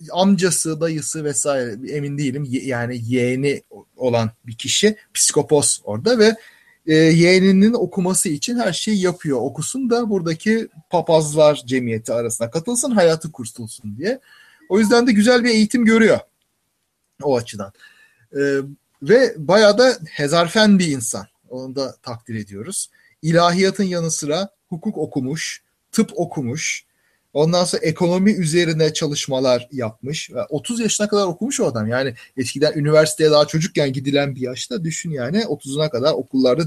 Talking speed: 130 wpm